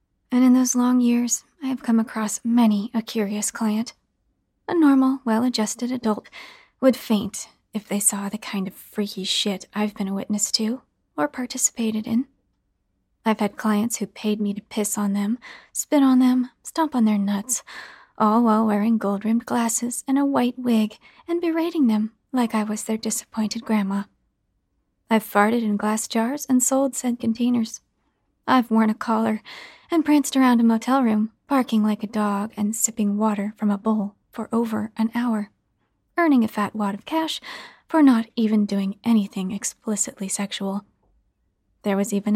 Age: 40-59